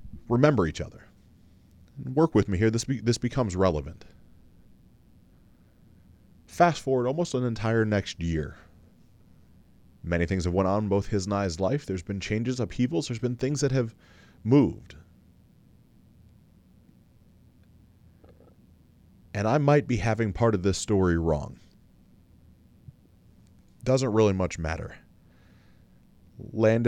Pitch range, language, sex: 90-115 Hz, English, male